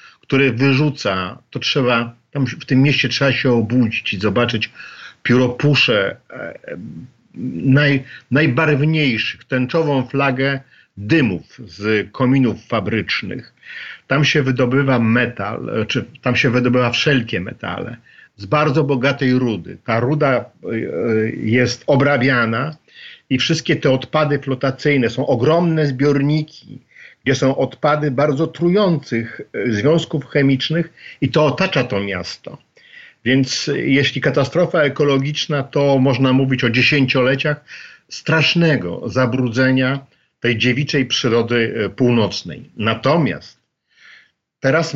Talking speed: 100 wpm